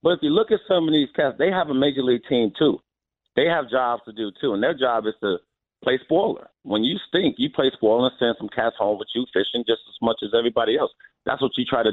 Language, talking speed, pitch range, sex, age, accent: English, 270 wpm, 115-150 Hz, male, 40-59, American